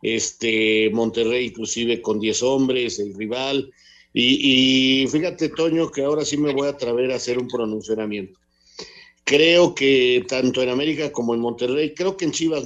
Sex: male